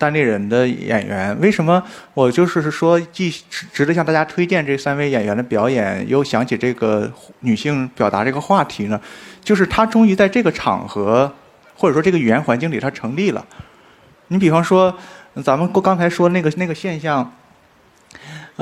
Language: Chinese